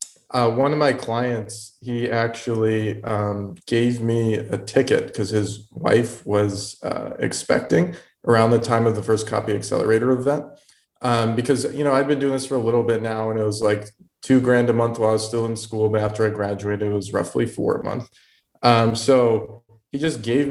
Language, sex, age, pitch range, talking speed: English, male, 20-39, 110-125 Hz, 205 wpm